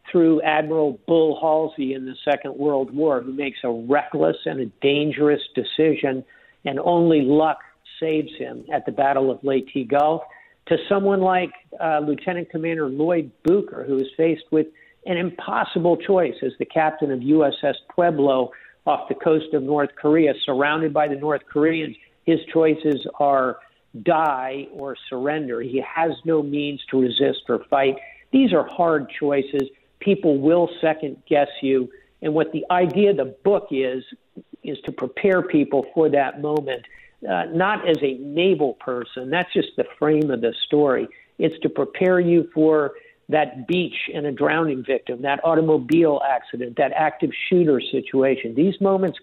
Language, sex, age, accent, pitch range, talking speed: English, male, 50-69, American, 135-165 Hz, 160 wpm